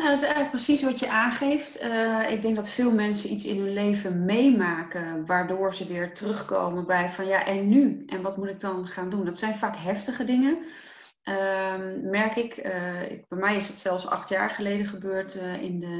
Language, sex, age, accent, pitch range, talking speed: Dutch, female, 30-49, Dutch, 180-215 Hz, 215 wpm